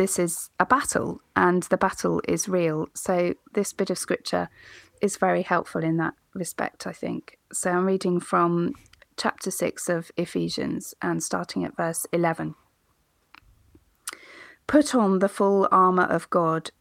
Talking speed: 150 wpm